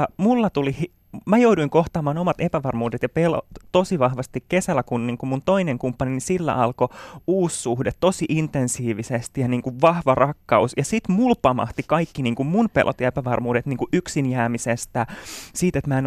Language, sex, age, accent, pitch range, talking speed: Finnish, male, 20-39, native, 125-175 Hz, 170 wpm